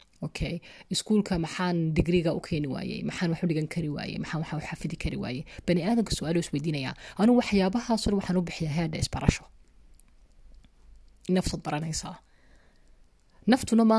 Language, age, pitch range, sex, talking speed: German, 30-49, 150-180 Hz, female, 130 wpm